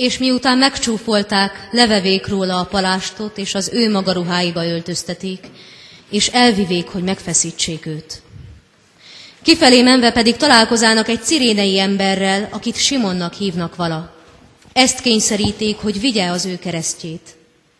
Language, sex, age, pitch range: Hungarian, female, 30-49, 185-225 Hz